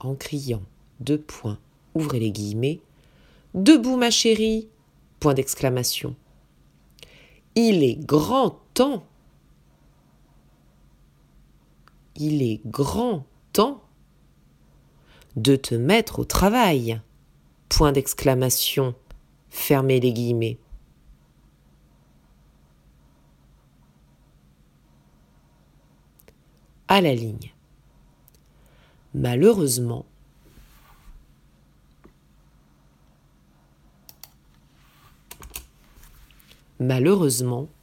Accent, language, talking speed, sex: French, French, 55 wpm, female